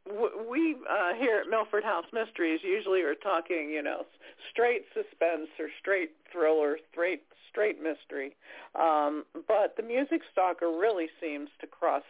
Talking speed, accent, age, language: 145 wpm, American, 50-69, English